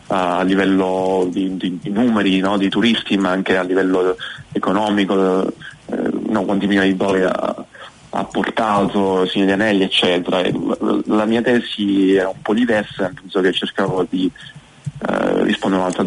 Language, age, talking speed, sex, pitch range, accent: Italian, 30-49, 155 wpm, male, 90-100 Hz, native